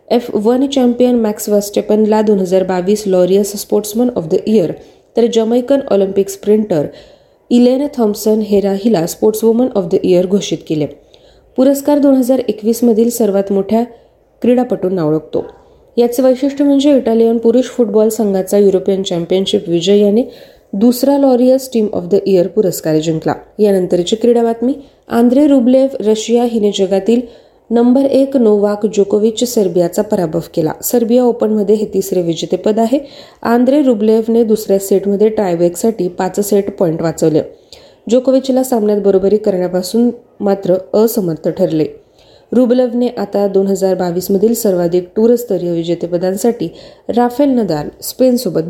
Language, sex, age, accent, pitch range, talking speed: Marathi, female, 30-49, native, 190-245 Hz, 125 wpm